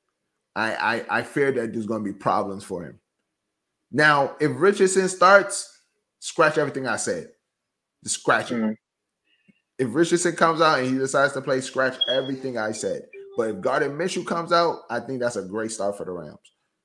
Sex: male